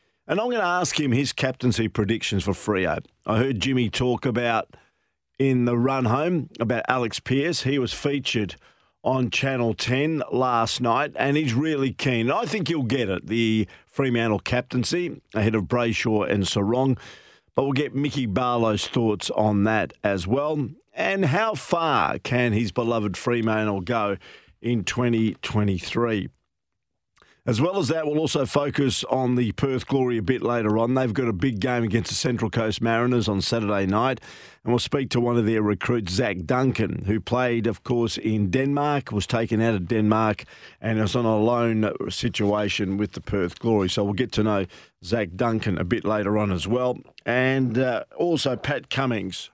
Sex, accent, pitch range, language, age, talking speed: male, Australian, 105-130 Hz, English, 50-69, 175 wpm